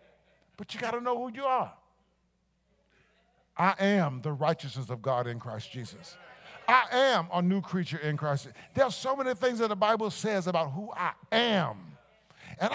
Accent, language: American, English